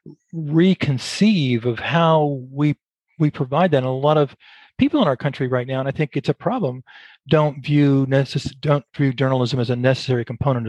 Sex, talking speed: male, 185 wpm